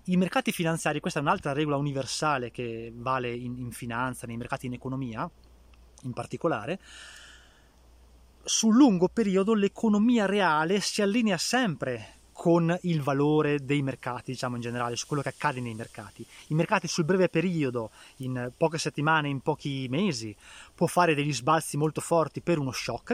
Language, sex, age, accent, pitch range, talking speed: Italian, male, 20-39, native, 125-175 Hz, 160 wpm